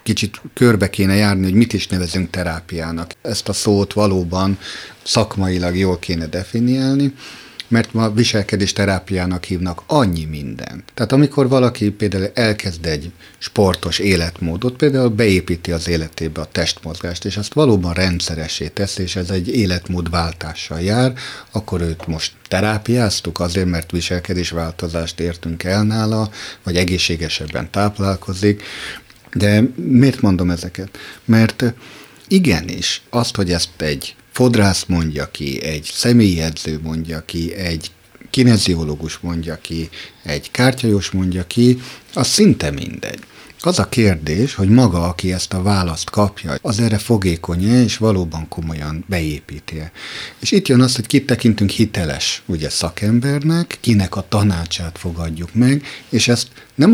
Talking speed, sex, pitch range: 130 wpm, male, 85-110 Hz